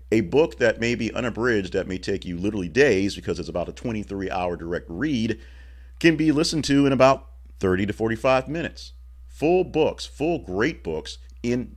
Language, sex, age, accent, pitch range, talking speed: English, male, 40-59, American, 65-100 Hz, 180 wpm